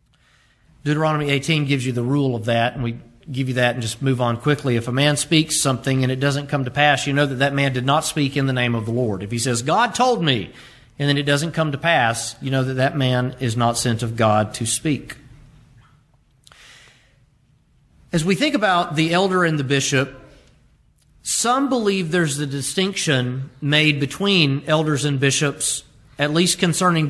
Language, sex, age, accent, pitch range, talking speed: English, male, 40-59, American, 130-175 Hz, 200 wpm